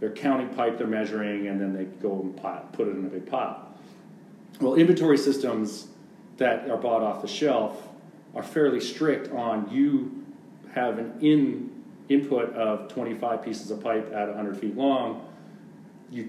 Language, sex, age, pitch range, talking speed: English, male, 40-59, 105-130 Hz, 165 wpm